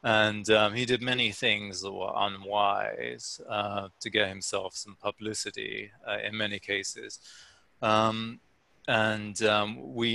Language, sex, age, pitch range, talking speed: English, male, 30-49, 95-110 Hz, 135 wpm